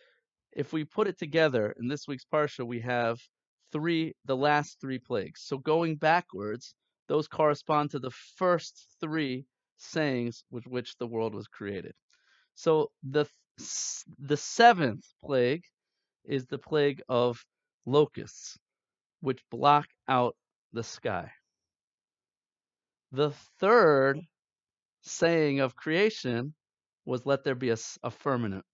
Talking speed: 125 wpm